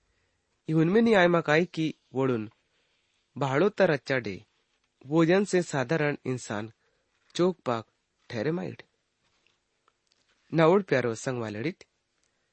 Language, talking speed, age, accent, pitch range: English, 90 wpm, 30-49, Indian, 110-170 Hz